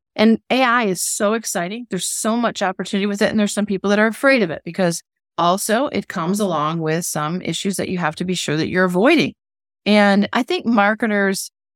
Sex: female